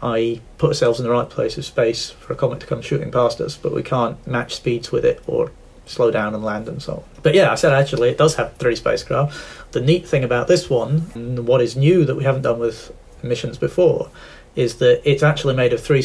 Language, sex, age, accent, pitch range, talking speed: English, male, 30-49, British, 115-145 Hz, 245 wpm